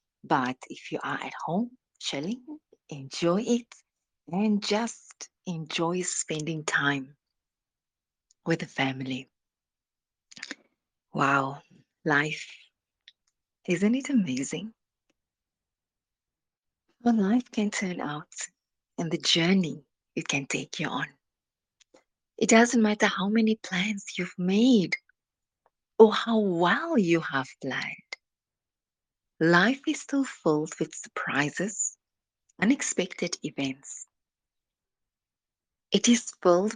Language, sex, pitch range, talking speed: English, female, 145-220 Hz, 100 wpm